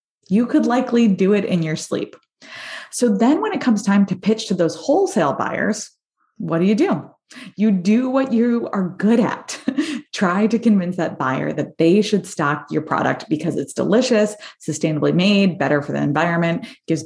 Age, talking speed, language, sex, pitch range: 20-39, 185 wpm, English, female, 160-215 Hz